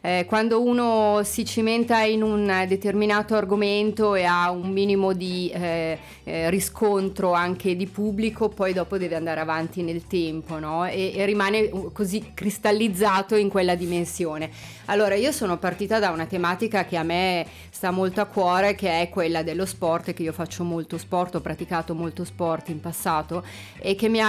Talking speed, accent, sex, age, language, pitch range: 170 wpm, native, female, 30-49, Italian, 165-200 Hz